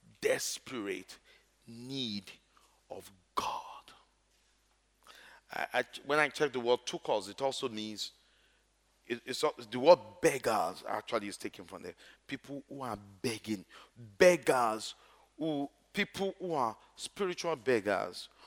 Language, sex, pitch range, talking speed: English, male, 110-150 Hz, 120 wpm